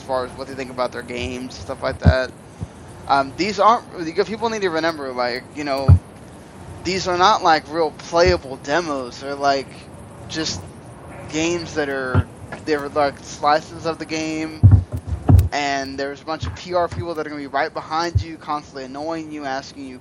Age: 10-29